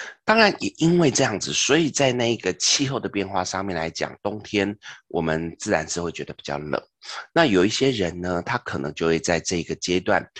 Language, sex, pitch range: Chinese, male, 80-115 Hz